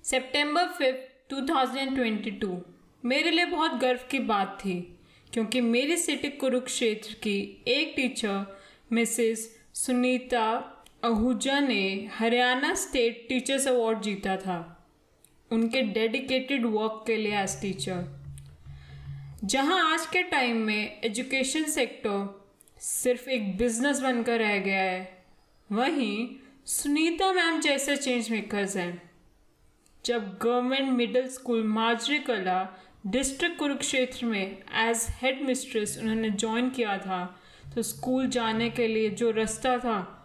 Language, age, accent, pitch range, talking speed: Hindi, 20-39, native, 210-260 Hz, 115 wpm